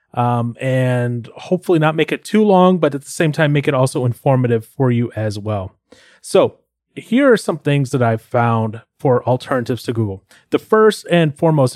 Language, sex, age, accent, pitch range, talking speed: English, male, 30-49, American, 115-160 Hz, 190 wpm